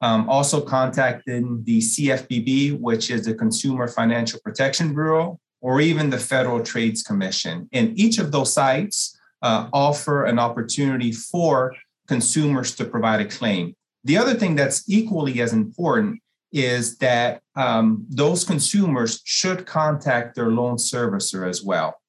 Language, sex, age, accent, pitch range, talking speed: English, male, 30-49, American, 120-155 Hz, 140 wpm